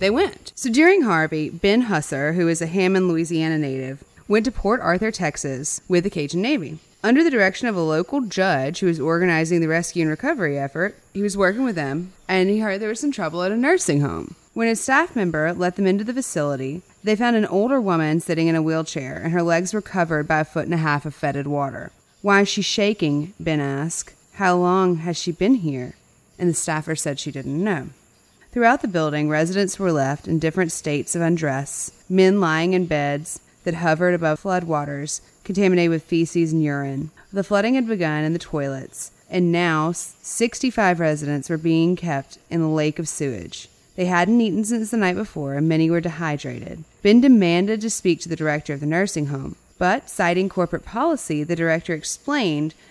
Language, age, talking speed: English, 30-49, 200 wpm